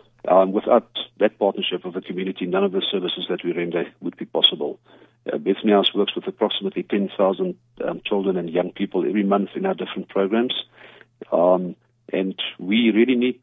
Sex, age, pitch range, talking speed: male, 50-69, 95-110 Hz, 180 wpm